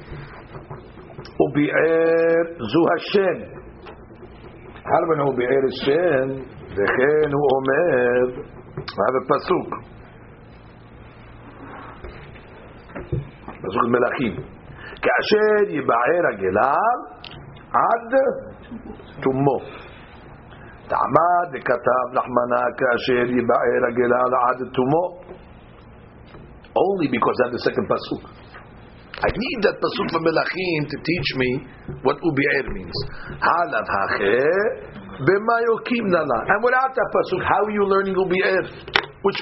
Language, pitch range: English, 125-190 Hz